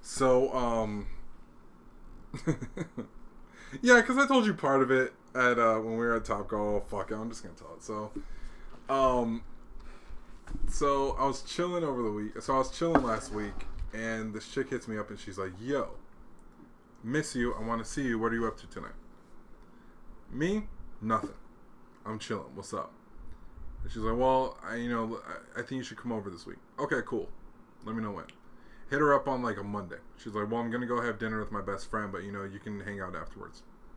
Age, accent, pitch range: 20-39, American, 100-130 Hz